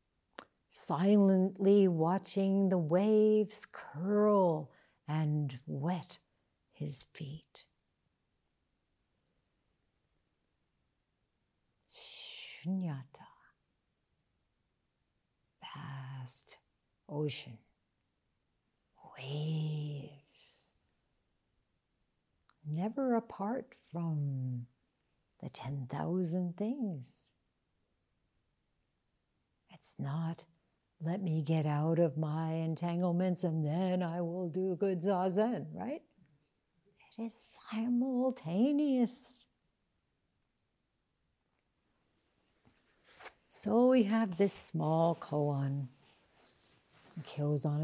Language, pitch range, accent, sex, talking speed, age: English, 155-200 Hz, American, female, 60 wpm, 60-79